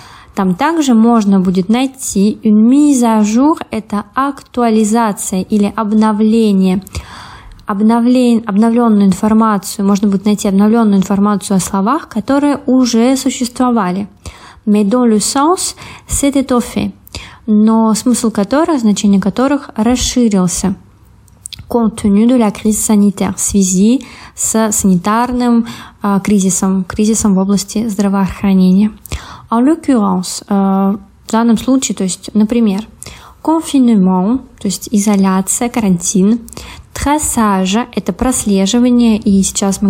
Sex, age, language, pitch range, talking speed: female, 20-39, Russian, 195-235 Hz, 100 wpm